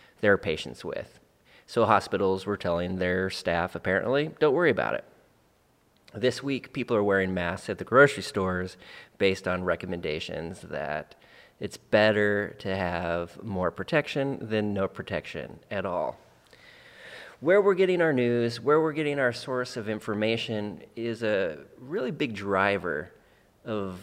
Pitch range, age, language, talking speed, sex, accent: 95-125 Hz, 30-49, English, 140 wpm, male, American